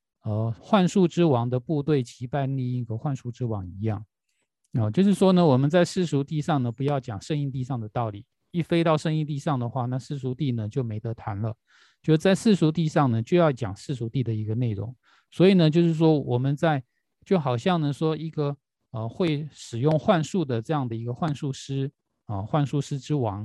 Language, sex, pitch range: Chinese, male, 115-155 Hz